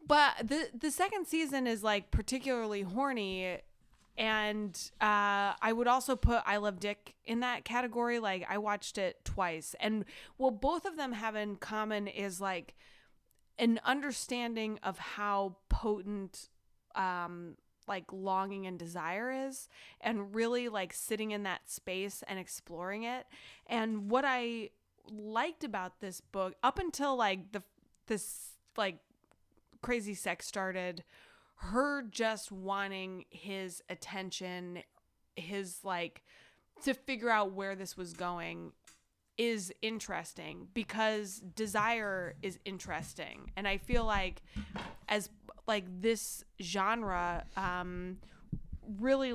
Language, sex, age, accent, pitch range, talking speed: English, female, 20-39, American, 190-230 Hz, 125 wpm